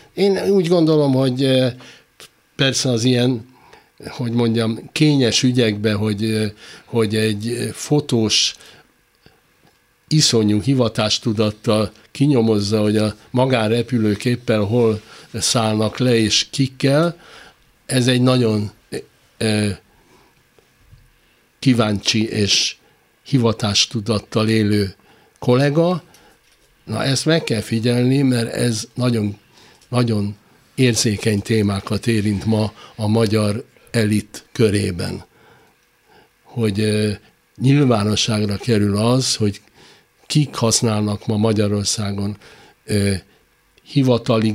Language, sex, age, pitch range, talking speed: Hungarian, male, 60-79, 105-125 Hz, 85 wpm